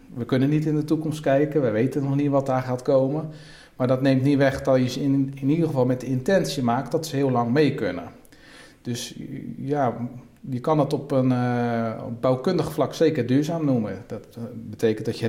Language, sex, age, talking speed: Dutch, male, 40-59, 210 wpm